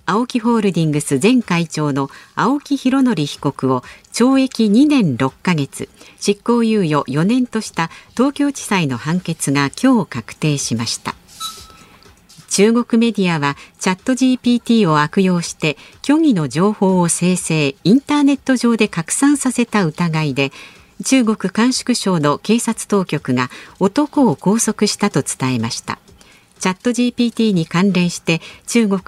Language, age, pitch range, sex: Japanese, 50-69, 155-230 Hz, female